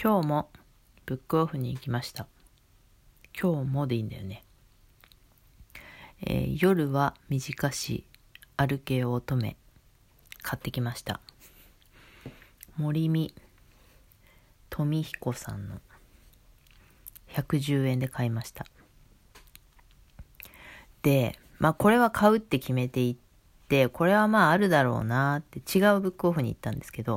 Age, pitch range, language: 40-59, 120-160 Hz, Japanese